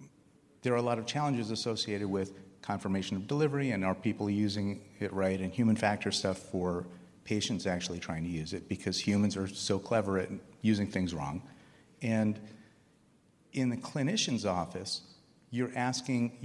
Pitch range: 100-125 Hz